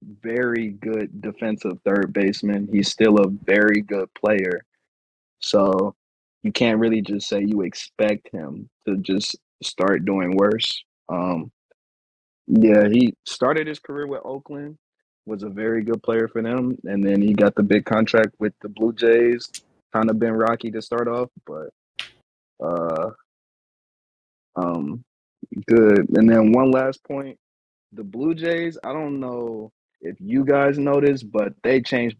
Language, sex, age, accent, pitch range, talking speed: English, male, 20-39, American, 105-125 Hz, 150 wpm